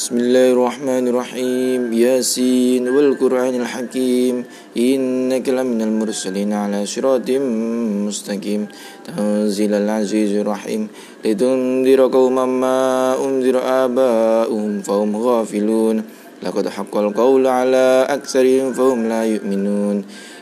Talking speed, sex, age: 70 wpm, male, 20-39